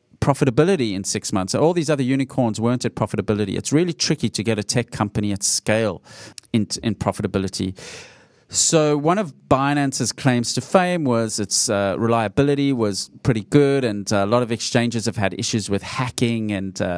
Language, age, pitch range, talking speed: English, 40-59, 100-130 Hz, 175 wpm